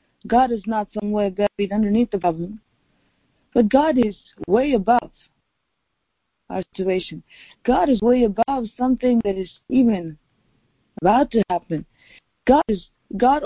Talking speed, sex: 130 wpm, female